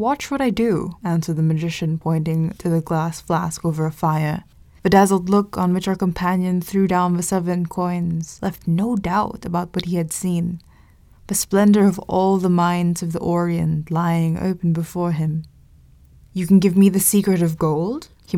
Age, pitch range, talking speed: 20-39, 170-195 Hz, 185 wpm